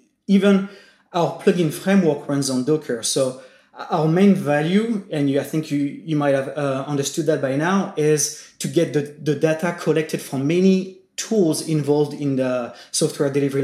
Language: English